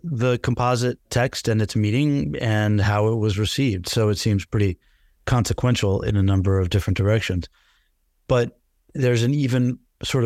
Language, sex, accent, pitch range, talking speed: English, male, American, 100-125 Hz, 160 wpm